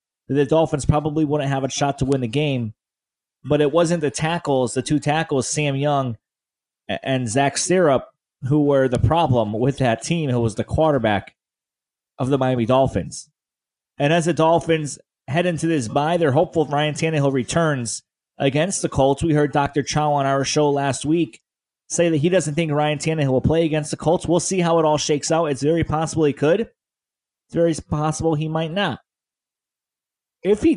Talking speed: 185 wpm